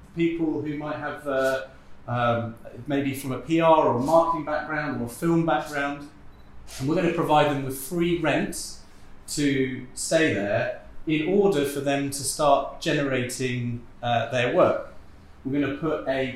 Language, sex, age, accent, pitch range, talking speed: English, male, 30-49, British, 130-150 Hz, 165 wpm